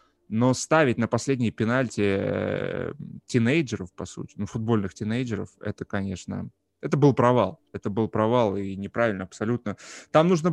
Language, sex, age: Russian, male, 20-39